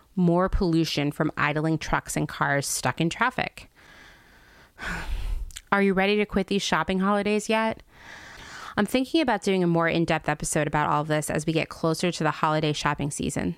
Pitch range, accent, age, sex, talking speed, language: 155-205 Hz, American, 30-49, female, 175 wpm, English